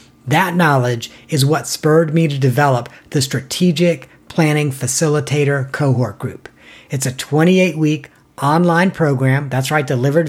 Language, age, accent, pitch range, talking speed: English, 40-59, American, 130-165 Hz, 135 wpm